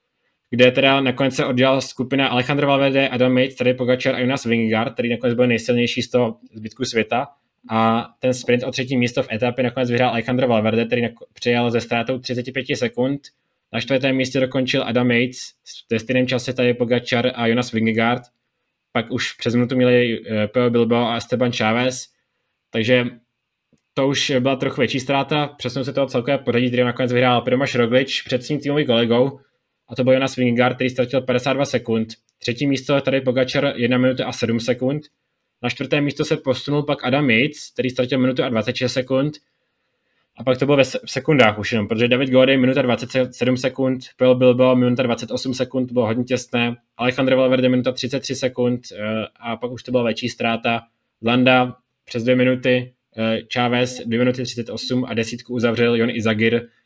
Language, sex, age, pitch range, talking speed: Czech, male, 20-39, 120-130 Hz, 175 wpm